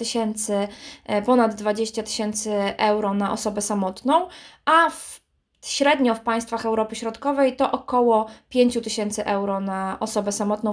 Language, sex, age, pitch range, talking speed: Polish, female, 20-39, 215-260 Hz, 120 wpm